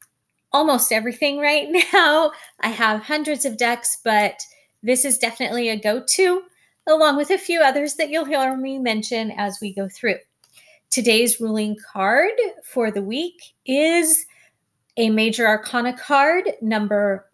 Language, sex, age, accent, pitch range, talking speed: English, female, 30-49, American, 220-295 Hz, 140 wpm